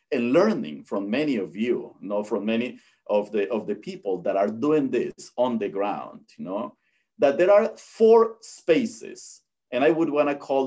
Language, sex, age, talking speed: English, male, 50-69, 195 wpm